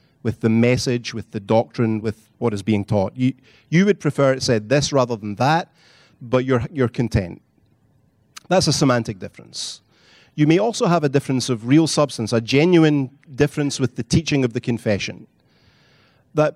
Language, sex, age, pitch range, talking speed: English, male, 30-49, 115-140 Hz, 175 wpm